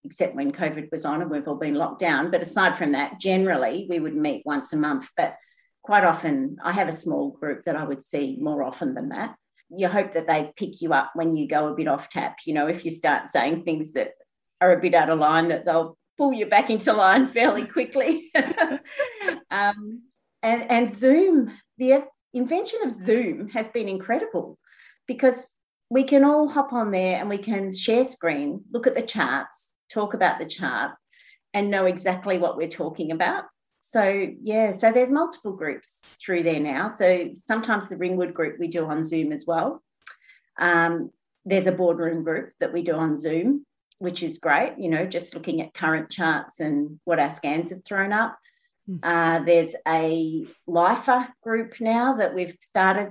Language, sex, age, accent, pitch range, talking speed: English, female, 30-49, Australian, 165-245 Hz, 190 wpm